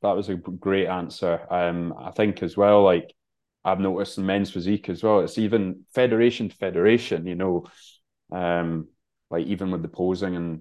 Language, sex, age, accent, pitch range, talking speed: English, male, 20-39, British, 85-95 Hz, 180 wpm